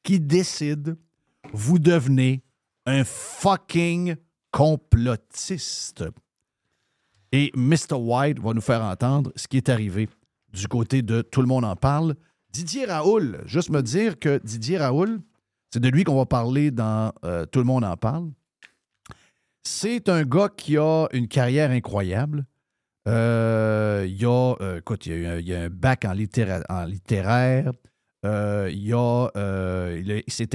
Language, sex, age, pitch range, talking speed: French, male, 50-69, 115-150 Hz, 145 wpm